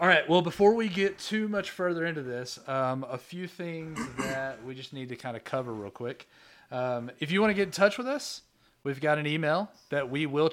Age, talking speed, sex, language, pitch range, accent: 30-49, 235 wpm, male, English, 125-150 Hz, American